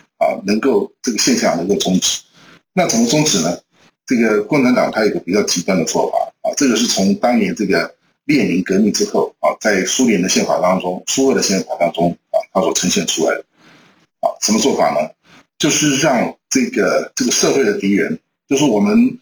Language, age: Chinese, 50-69